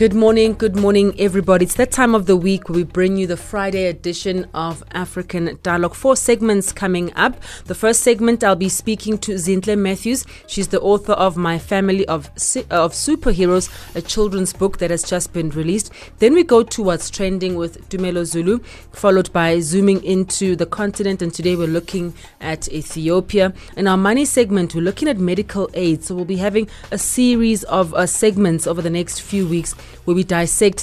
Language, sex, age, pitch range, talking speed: English, female, 30-49, 165-200 Hz, 190 wpm